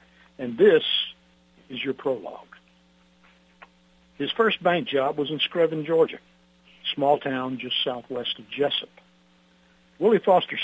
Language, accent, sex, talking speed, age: English, American, male, 125 wpm, 60-79